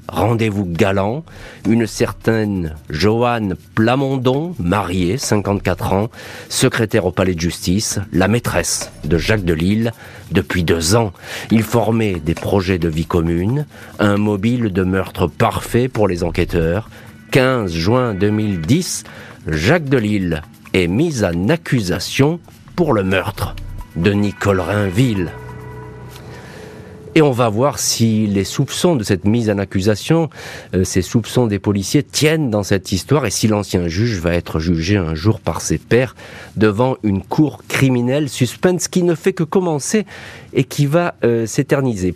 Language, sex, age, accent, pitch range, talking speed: French, male, 40-59, French, 95-125 Hz, 140 wpm